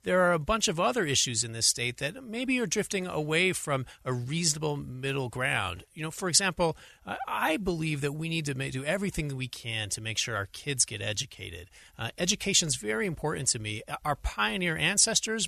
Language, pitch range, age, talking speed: English, 120-180 Hz, 30-49, 200 wpm